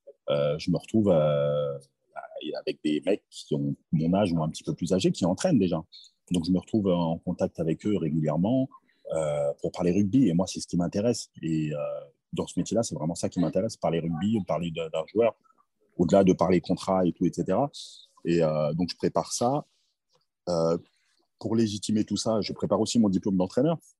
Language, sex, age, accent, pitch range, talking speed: French, male, 30-49, French, 85-105 Hz, 200 wpm